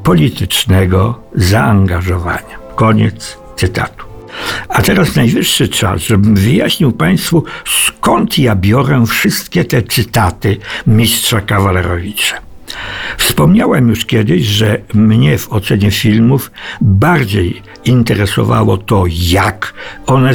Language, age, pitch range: Polish, 60-79, 100-135 Hz